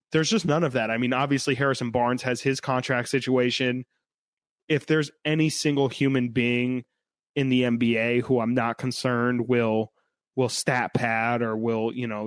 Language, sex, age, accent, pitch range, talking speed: English, male, 20-39, American, 115-140 Hz, 170 wpm